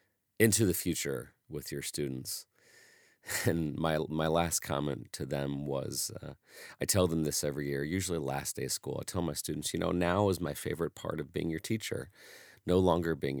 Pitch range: 70-95 Hz